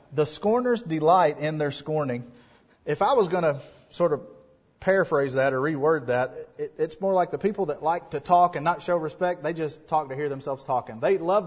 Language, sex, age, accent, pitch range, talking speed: English, male, 30-49, American, 135-180 Hz, 210 wpm